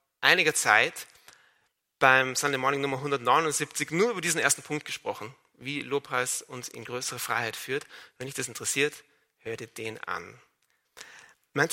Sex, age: male, 40-59